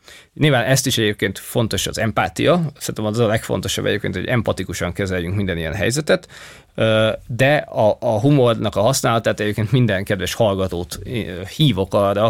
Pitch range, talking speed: 100-125 Hz, 145 wpm